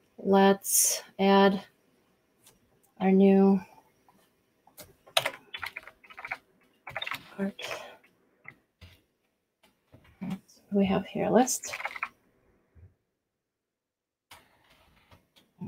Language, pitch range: English, 195-220 Hz